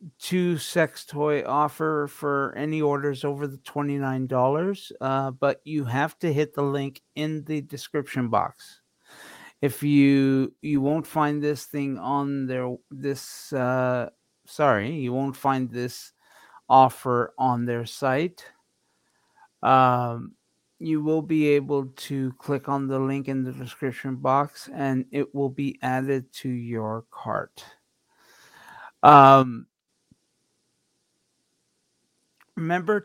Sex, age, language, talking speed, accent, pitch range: male, 50-69, English, 120 wpm, American, 130-150 Hz